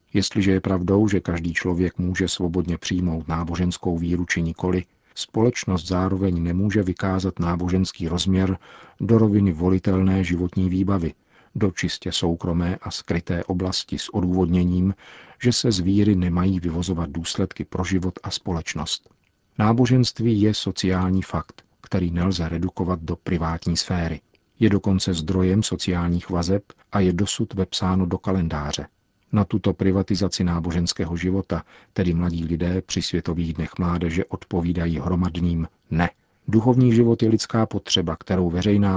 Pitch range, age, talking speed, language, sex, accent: 85-95 Hz, 50-69, 130 wpm, Czech, male, native